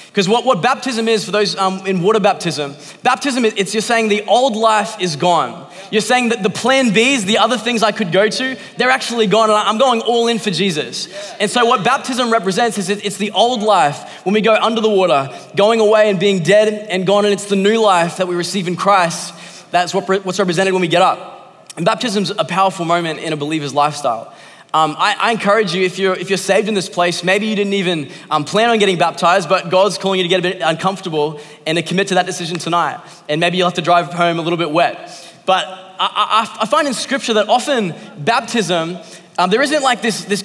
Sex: male